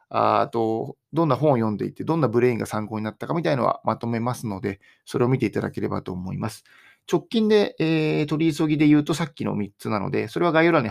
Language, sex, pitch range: Japanese, male, 105-145 Hz